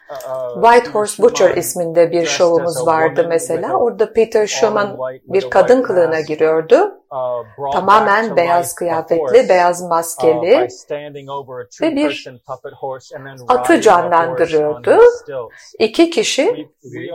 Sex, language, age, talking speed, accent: female, Turkish, 50-69, 90 wpm, native